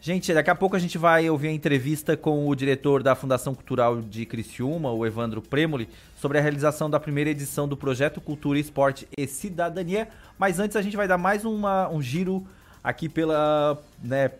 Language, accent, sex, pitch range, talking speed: Portuguese, Brazilian, male, 125-165 Hz, 190 wpm